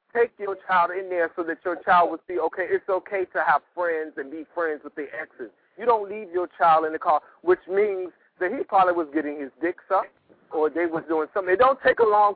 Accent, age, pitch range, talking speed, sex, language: American, 40-59, 160-200 Hz, 250 wpm, male, English